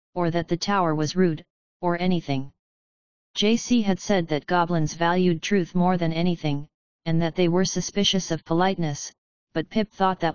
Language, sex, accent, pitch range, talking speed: English, female, American, 165-190 Hz, 170 wpm